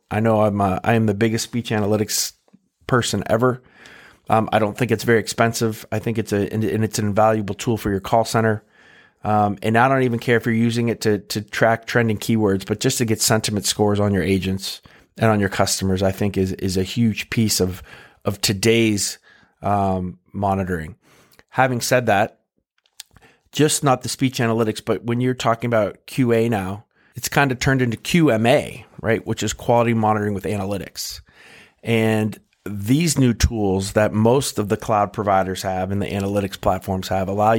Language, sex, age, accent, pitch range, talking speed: English, male, 30-49, American, 100-115 Hz, 185 wpm